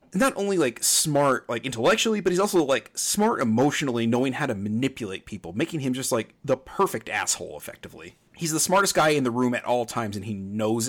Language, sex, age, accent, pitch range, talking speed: English, male, 30-49, American, 110-140 Hz, 210 wpm